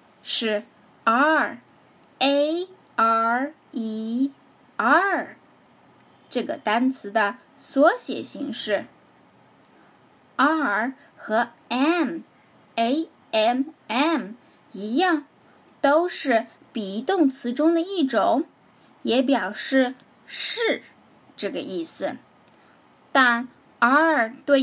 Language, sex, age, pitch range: Chinese, female, 10-29, 230-305 Hz